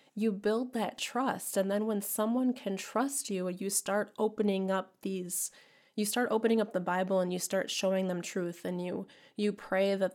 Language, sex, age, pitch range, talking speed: English, female, 20-39, 195-230 Hz, 195 wpm